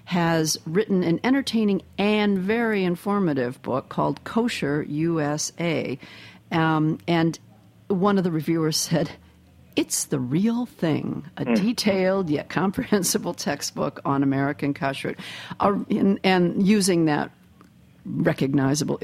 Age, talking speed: 50-69, 110 wpm